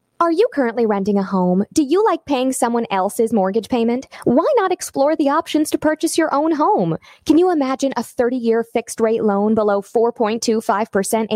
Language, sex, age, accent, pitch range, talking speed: English, female, 20-39, American, 210-300 Hz, 175 wpm